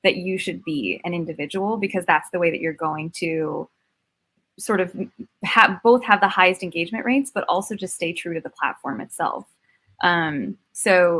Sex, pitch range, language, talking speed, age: female, 175-205 Hz, English, 180 wpm, 20-39